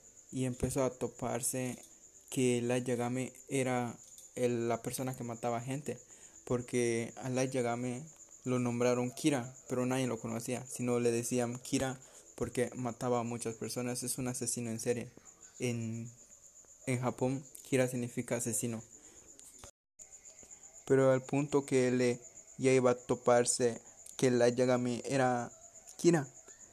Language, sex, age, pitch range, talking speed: Spanish, male, 20-39, 120-130 Hz, 135 wpm